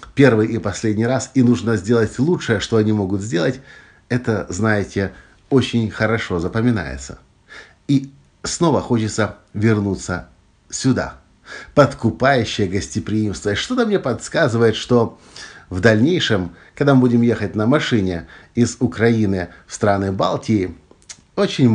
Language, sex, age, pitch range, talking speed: Russian, male, 50-69, 90-120 Hz, 120 wpm